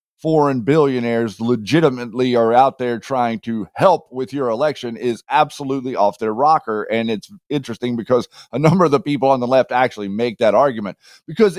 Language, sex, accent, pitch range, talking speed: English, male, American, 125-180 Hz, 175 wpm